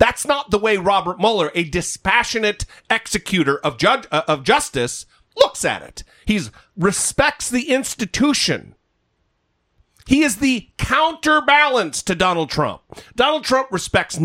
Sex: male